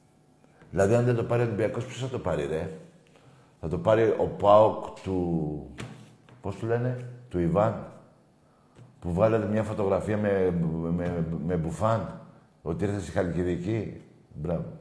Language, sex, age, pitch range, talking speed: Greek, male, 60-79, 90-125 Hz, 150 wpm